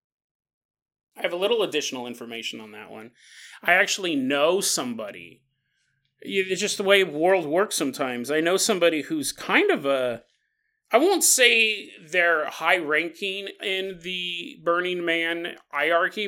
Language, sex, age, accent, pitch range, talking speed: English, male, 30-49, American, 155-230 Hz, 145 wpm